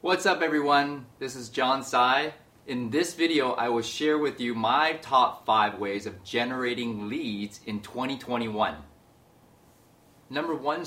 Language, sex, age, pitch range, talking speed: English, male, 30-49, 100-125 Hz, 145 wpm